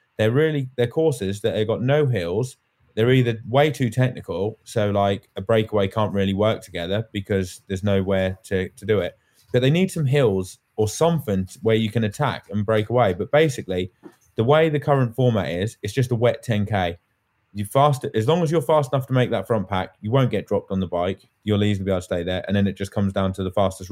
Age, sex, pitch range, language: 20-39, male, 100-125 Hz, English